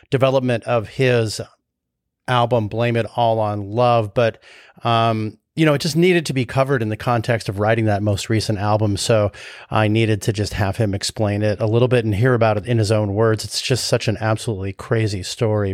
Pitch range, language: 105-130 Hz, English